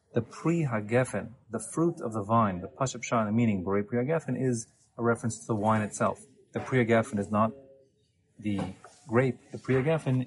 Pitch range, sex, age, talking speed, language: 105-130 Hz, male, 30-49, 160 wpm, English